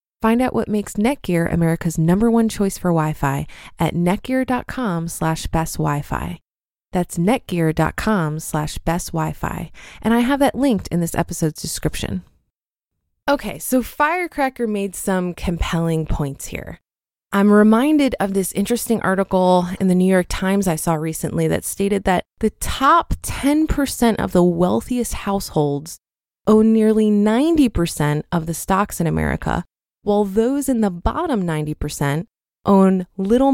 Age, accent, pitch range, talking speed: 20-39, American, 165-230 Hz, 140 wpm